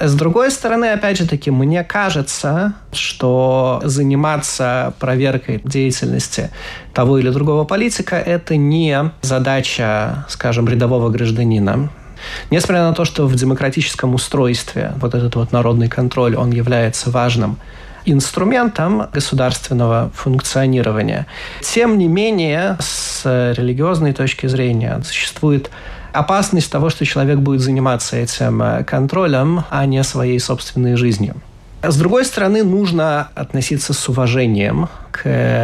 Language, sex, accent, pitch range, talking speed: Russian, male, native, 120-150 Hz, 115 wpm